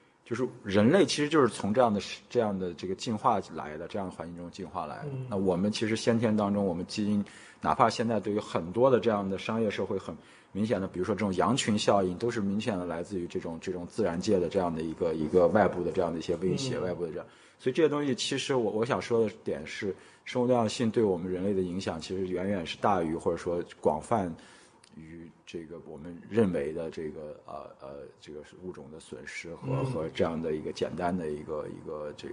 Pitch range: 90-110 Hz